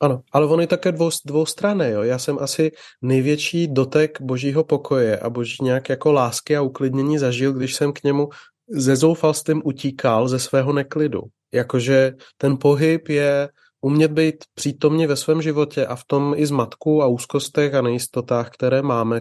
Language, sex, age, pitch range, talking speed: Czech, male, 30-49, 115-145 Hz, 175 wpm